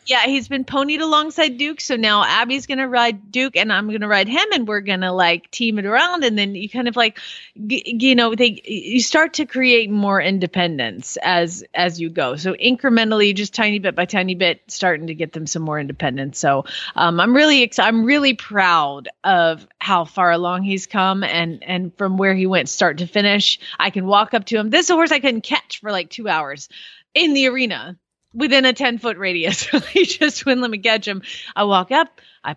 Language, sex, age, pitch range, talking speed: English, female, 30-49, 180-260 Hz, 220 wpm